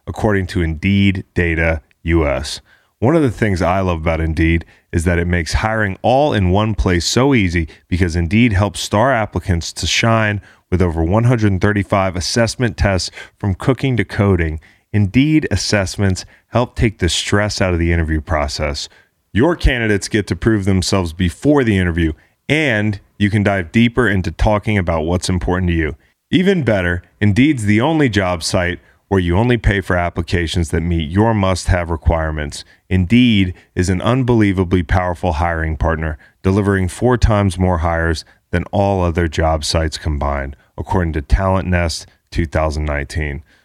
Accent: American